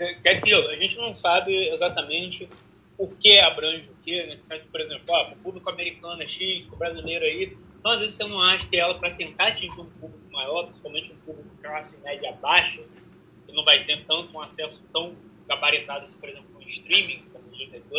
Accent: Brazilian